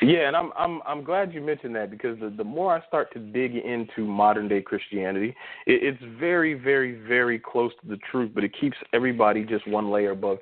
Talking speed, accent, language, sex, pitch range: 220 wpm, American, English, male, 110-145 Hz